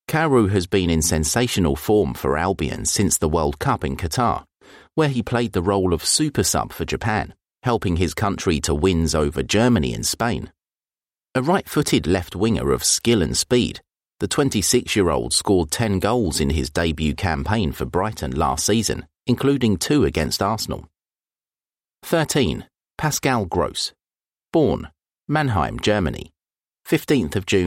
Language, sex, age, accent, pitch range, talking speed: English, male, 40-59, British, 80-115 Hz, 140 wpm